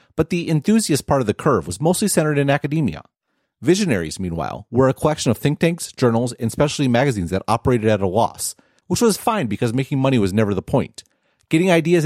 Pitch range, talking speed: 115-165 Hz, 205 wpm